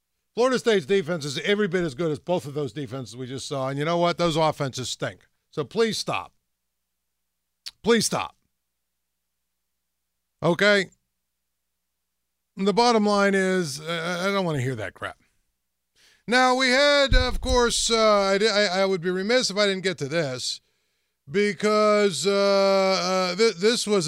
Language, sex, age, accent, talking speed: English, male, 50-69, American, 160 wpm